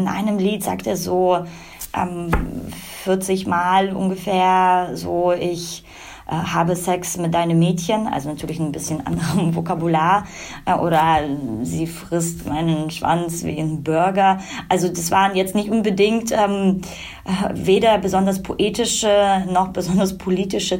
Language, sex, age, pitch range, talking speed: German, female, 20-39, 170-195 Hz, 135 wpm